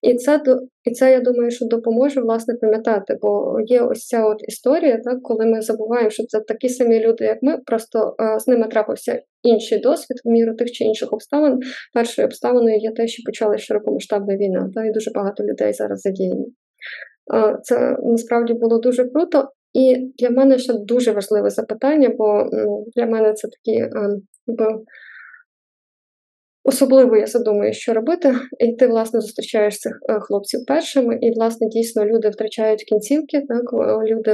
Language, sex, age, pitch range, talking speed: Ukrainian, female, 20-39, 220-255 Hz, 155 wpm